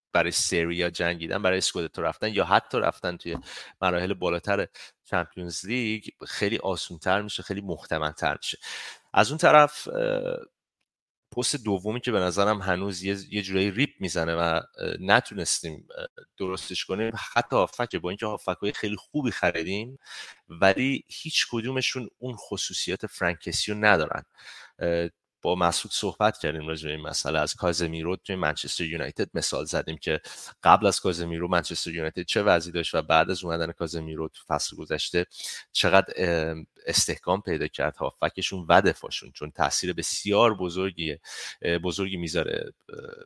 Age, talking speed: 30-49, 135 wpm